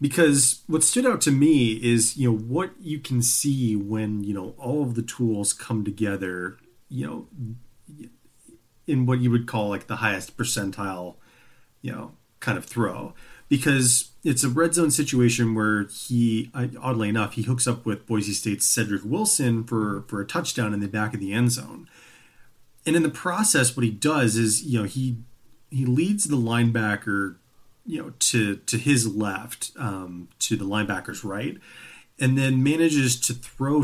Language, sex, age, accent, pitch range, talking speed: English, male, 30-49, American, 105-135 Hz, 175 wpm